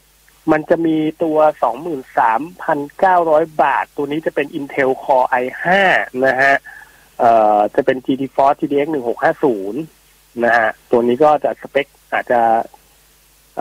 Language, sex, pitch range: Thai, male, 130-165 Hz